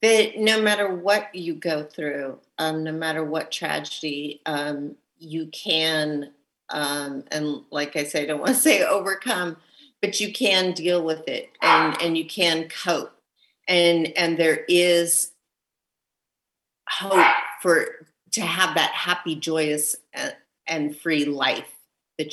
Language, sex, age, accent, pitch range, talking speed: English, female, 40-59, American, 150-170 Hz, 140 wpm